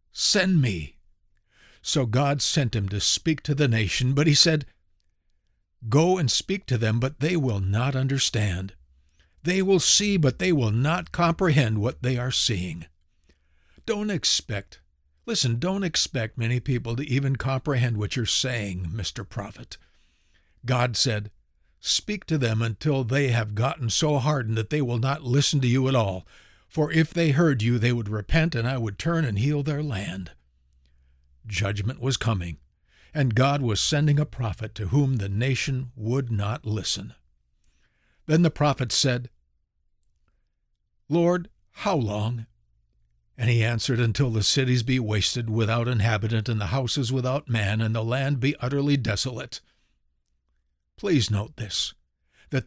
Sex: male